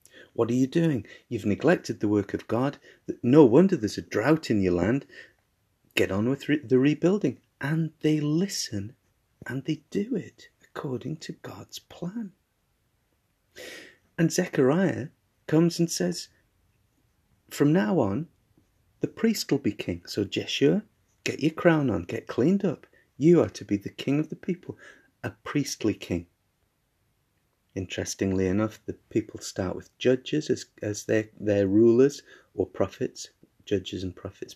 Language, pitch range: English, 95-135 Hz